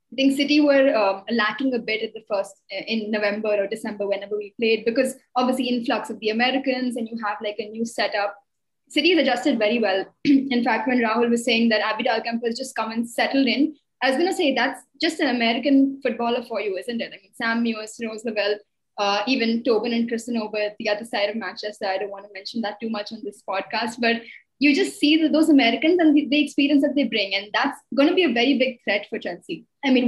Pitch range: 215-265 Hz